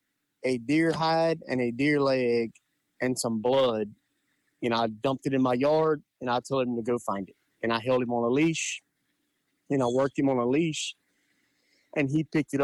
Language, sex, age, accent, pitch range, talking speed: English, male, 30-49, American, 120-145 Hz, 220 wpm